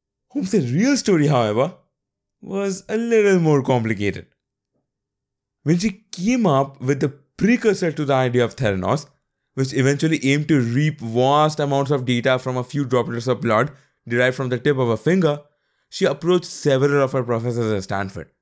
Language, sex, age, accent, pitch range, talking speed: English, male, 20-39, Indian, 120-155 Hz, 165 wpm